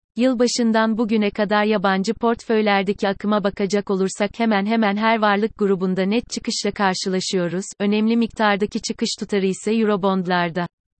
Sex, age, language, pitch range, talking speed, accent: female, 30-49, Turkish, 190-220 Hz, 120 wpm, native